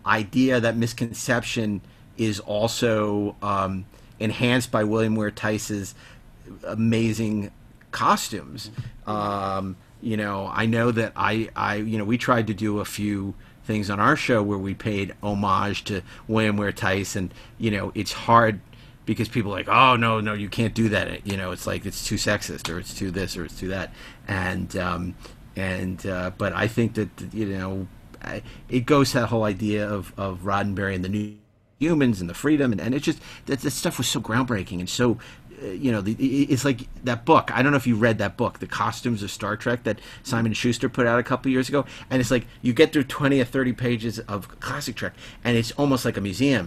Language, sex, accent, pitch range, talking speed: English, male, American, 100-125 Hz, 205 wpm